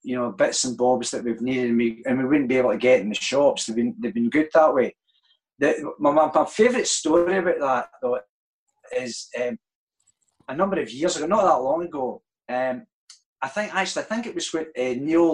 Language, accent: English, British